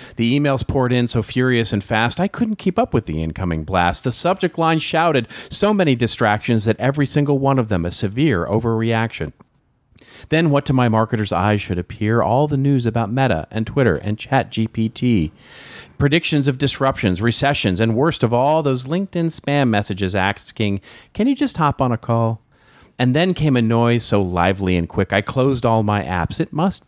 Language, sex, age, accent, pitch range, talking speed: English, male, 40-59, American, 105-145 Hz, 190 wpm